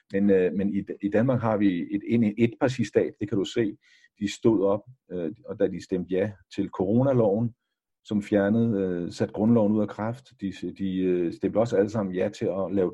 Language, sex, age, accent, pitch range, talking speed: Danish, male, 50-69, native, 105-150 Hz, 210 wpm